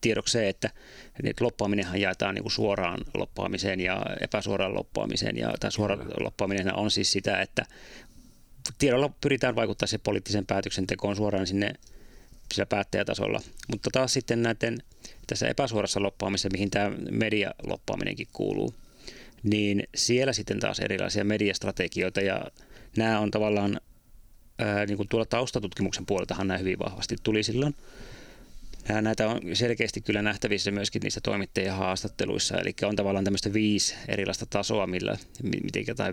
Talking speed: 125 wpm